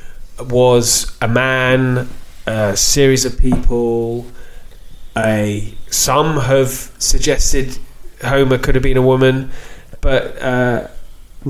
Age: 20-39